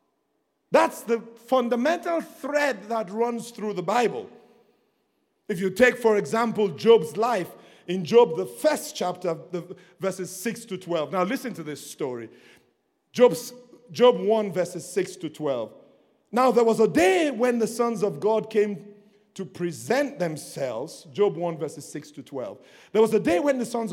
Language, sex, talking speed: English, male, 165 wpm